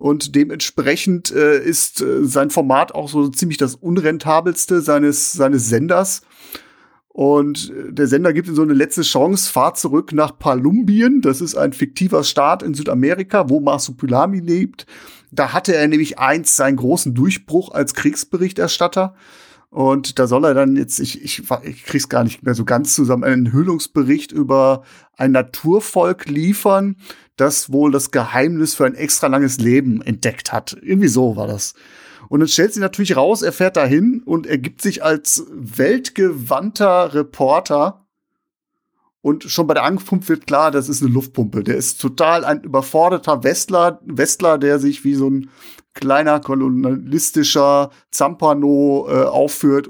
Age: 40-59